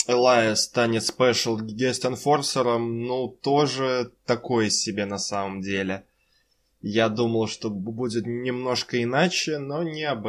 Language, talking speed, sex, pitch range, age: Russian, 110 wpm, male, 105-130 Hz, 20-39